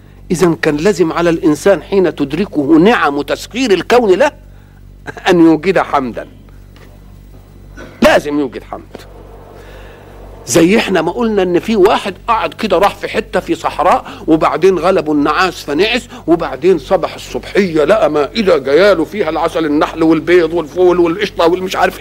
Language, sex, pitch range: Arabic, male, 145-210 Hz